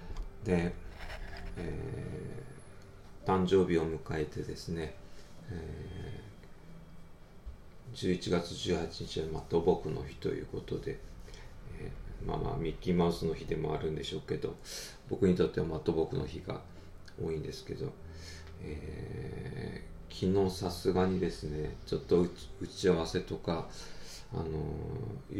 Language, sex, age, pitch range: Japanese, male, 40-59, 80-95 Hz